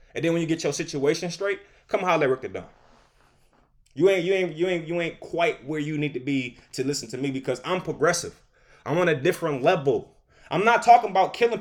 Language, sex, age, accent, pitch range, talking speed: English, male, 20-39, American, 155-205 Hz, 235 wpm